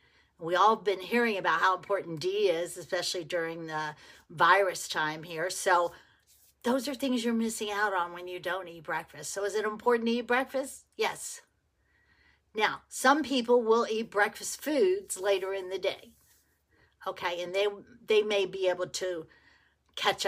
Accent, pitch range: American, 170-225 Hz